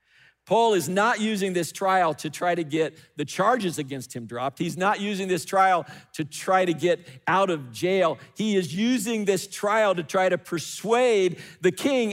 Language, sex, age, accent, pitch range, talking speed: English, male, 50-69, American, 185-240 Hz, 190 wpm